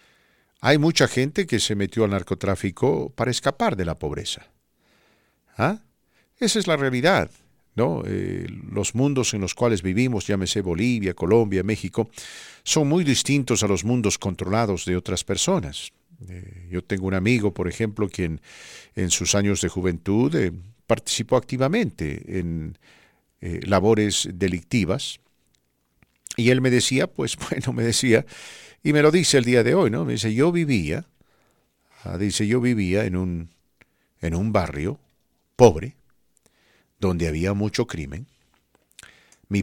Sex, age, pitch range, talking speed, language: male, 50-69, 95-130 Hz, 145 wpm, English